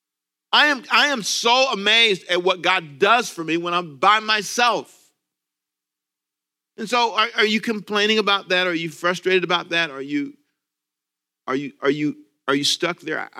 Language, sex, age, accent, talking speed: English, male, 40-59, American, 175 wpm